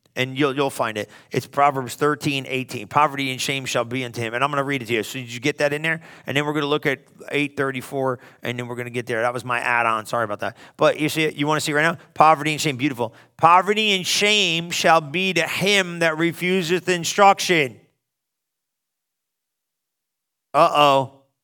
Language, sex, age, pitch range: English, male, 40-59, 145-200 Hz